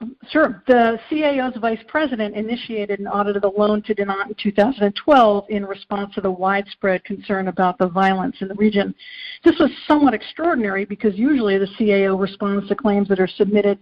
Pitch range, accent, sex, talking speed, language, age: 200-235 Hz, American, female, 175 wpm, English, 50-69